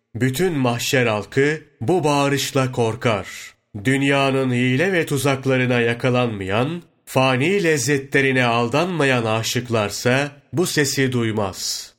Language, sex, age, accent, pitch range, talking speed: Turkish, male, 30-49, native, 120-145 Hz, 90 wpm